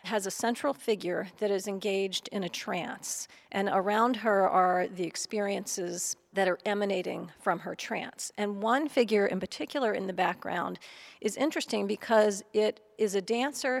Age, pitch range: 40-59, 195-230 Hz